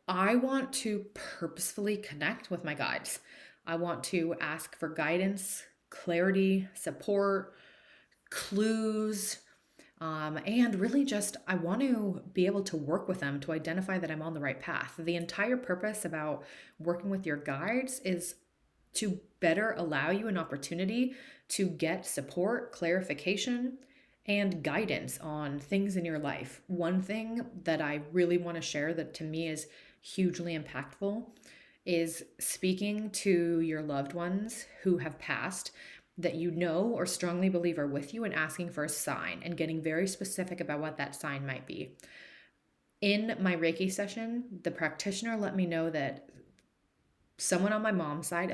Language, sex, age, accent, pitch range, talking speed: English, female, 30-49, American, 160-200 Hz, 155 wpm